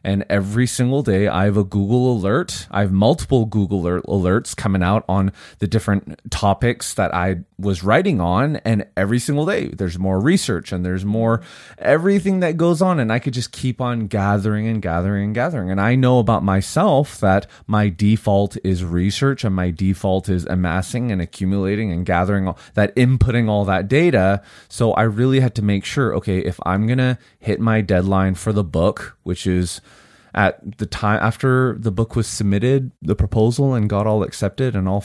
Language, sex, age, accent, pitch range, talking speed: English, male, 20-39, American, 95-115 Hz, 190 wpm